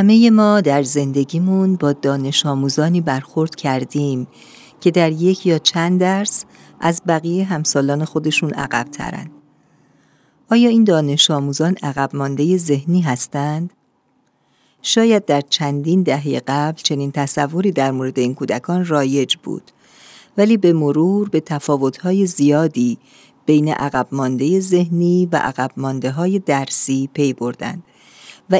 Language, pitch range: Persian, 140-185 Hz